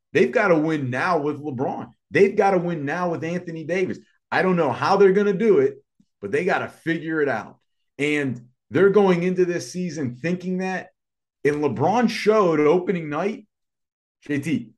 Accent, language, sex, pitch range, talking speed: American, English, male, 135-185 Hz, 185 wpm